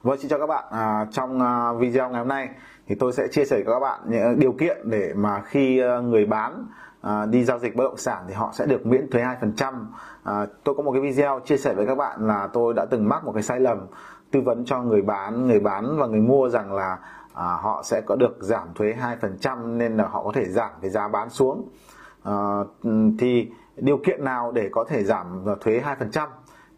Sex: male